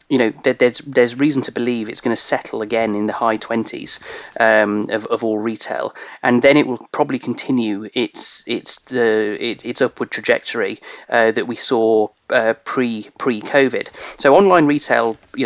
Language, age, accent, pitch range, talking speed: English, 30-49, British, 115-135 Hz, 175 wpm